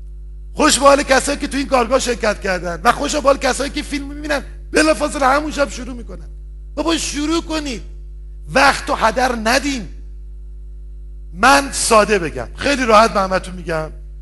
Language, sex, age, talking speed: Persian, male, 50-69, 155 wpm